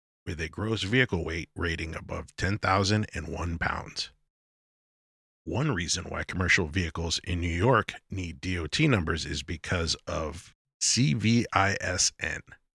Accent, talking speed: American, 115 wpm